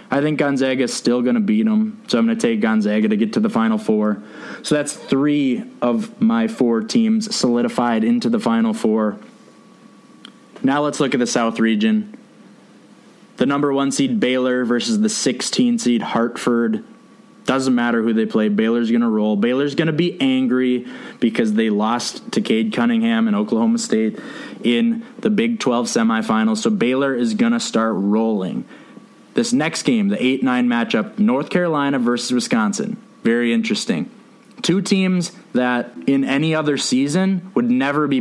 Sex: male